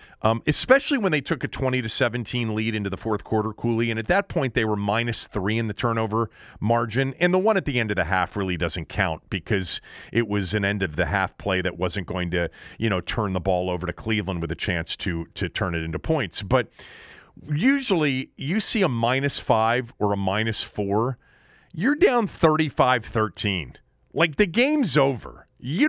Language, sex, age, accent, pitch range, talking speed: English, male, 40-59, American, 105-160 Hz, 205 wpm